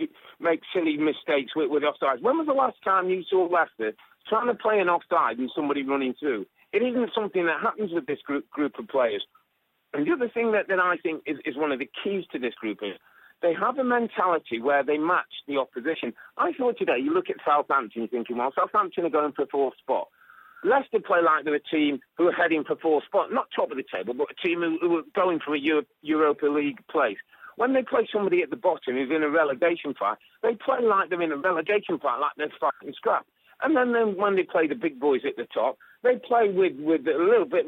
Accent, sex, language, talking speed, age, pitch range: British, male, English, 240 wpm, 40-59, 145-220 Hz